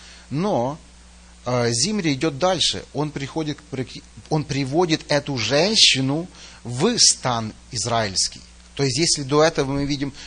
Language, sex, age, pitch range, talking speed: Russian, male, 30-49, 120-160 Hz, 115 wpm